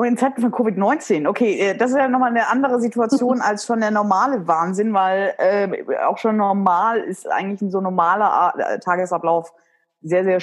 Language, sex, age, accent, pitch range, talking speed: German, female, 20-39, German, 175-215 Hz, 175 wpm